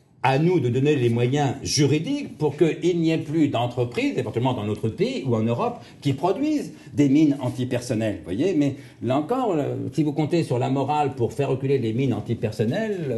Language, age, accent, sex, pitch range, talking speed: French, 60-79, French, male, 105-130 Hz, 185 wpm